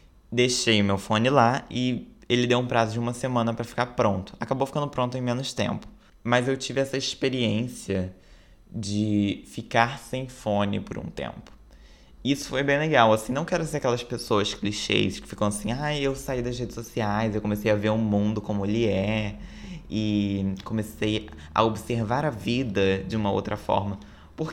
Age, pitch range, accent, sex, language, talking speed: 20-39, 100-125 Hz, Brazilian, male, Portuguese, 185 wpm